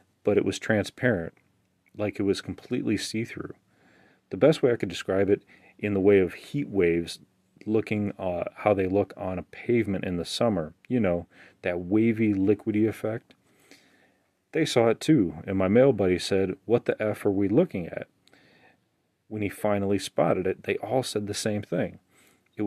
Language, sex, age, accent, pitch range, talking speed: English, male, 30-49, American, 95-115 Hz, 175 wpm